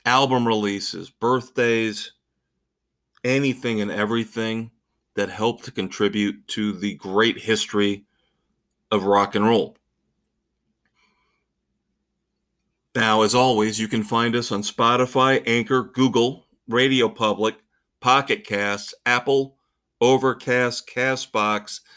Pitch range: 110-125 Hz